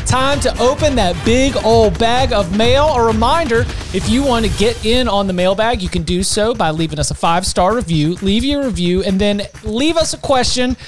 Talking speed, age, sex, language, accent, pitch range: 215 wpm, 30-49, male, English, American, 185-240 Hz